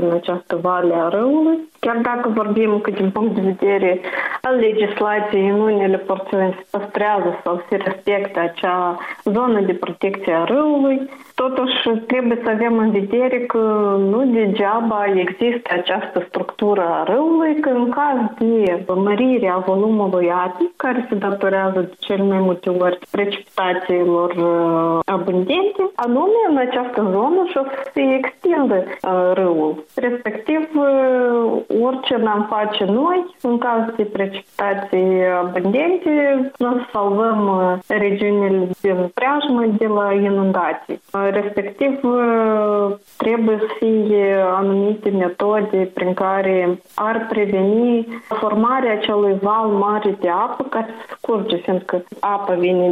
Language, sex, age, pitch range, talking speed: Romanian, female, 30-49, 185-230 Hz, 115 wpm